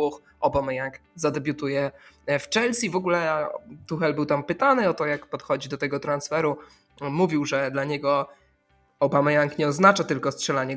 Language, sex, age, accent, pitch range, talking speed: Polish, male, 20-39, native, 140-160 Hz, 145 wpm